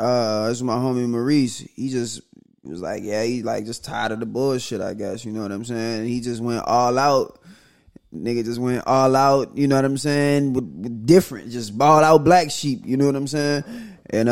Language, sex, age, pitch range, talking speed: English, male, 20-39, 115-140 Hz, 225 wpm